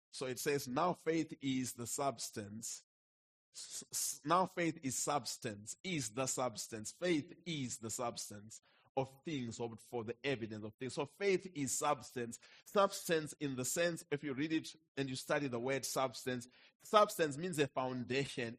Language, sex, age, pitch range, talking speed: English, male, 30-49, 135-190 Hz, 160 wpm